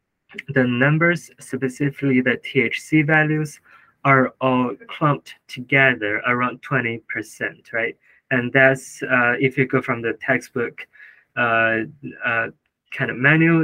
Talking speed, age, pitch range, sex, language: 125 wpm, 20-39, 120-150 Hz, male, English